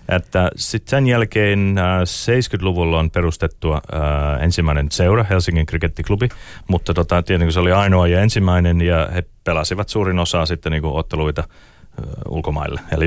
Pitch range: 80-95 Hz